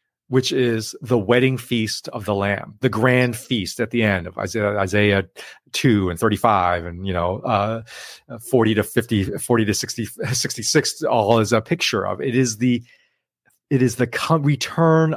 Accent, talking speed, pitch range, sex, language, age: American, 170 wpm, 110-145 Hz, male, English, 30-49